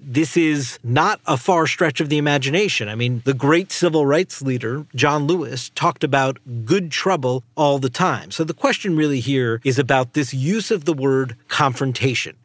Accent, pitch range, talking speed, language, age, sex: American, 130-165 Hz, 185 wpm, English, 50-69, male